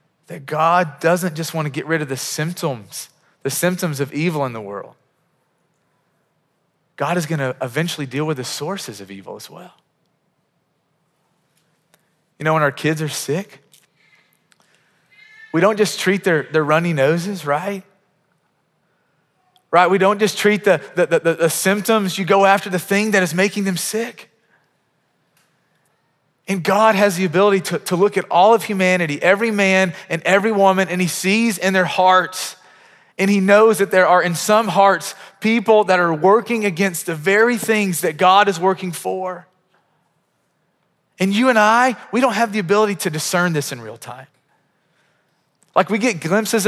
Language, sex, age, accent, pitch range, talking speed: English, male, 30-49, American, 165-205 Hz, 170 wpm